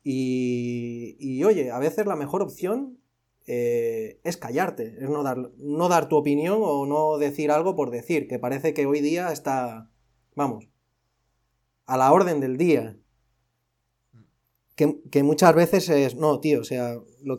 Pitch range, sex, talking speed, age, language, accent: 130-175 Hz, male, 160 wpm, 30-49, Spanish, Spanish